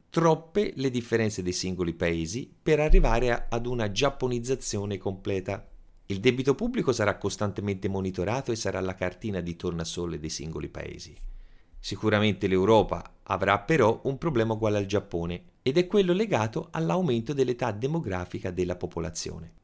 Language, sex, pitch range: Italian, male, 90-140 Hz